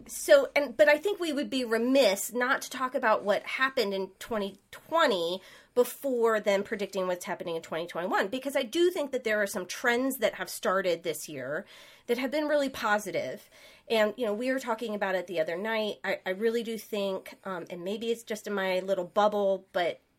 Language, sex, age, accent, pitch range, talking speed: English, female, 30-49, American, 195-245 Hz, 215 wpm